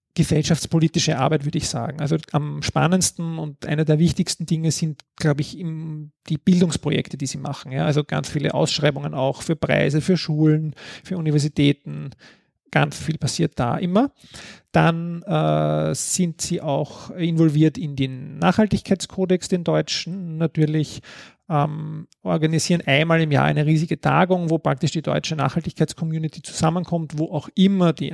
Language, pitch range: German, 150-170 Hz